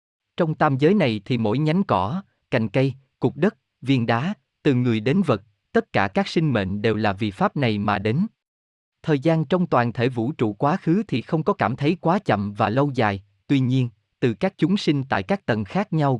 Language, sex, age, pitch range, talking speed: Vietnamese, male, 20-39, 110-160 Hz, 220 wpm